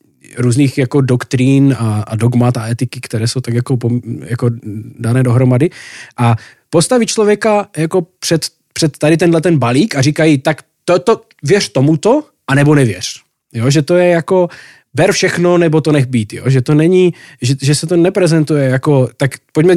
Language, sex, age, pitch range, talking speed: Slovak, male, 20-39, 130-165 Hz, 160 wpm